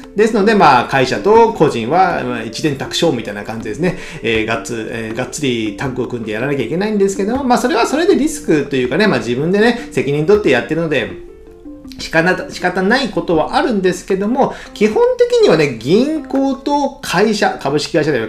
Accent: native